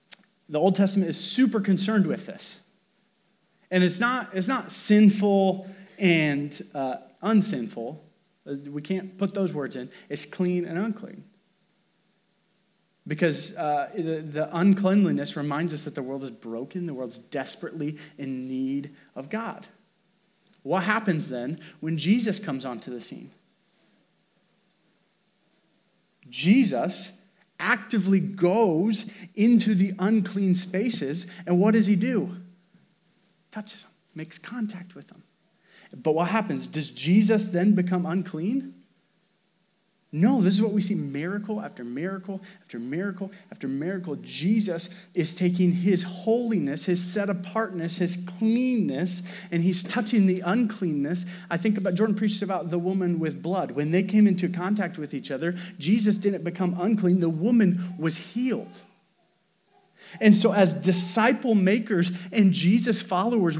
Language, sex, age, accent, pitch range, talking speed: English, male, 30-49, American, 175-205 Hz, 130 wpm